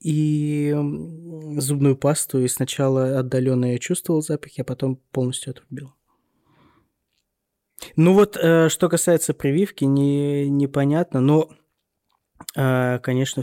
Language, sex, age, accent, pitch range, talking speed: Russian, male, 20-39, native, 130-145 Hz, 100 wpm